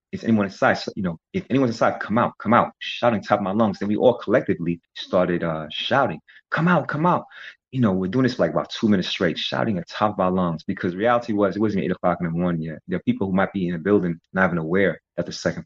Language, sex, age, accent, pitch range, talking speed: English, male, 30-49, American, 85-105 Hz, 270 wpm